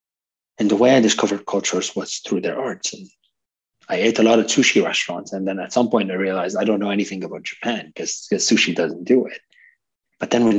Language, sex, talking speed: English, male, 225 wpm